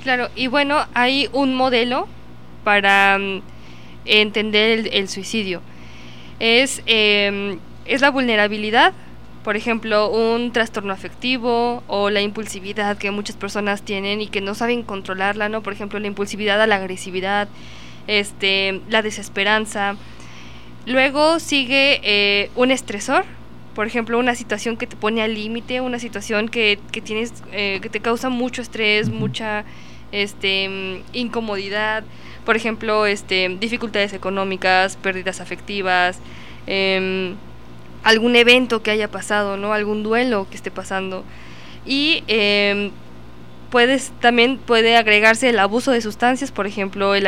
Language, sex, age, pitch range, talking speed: Spanish, female, 10-29, 200-235 Hz, 130 wpm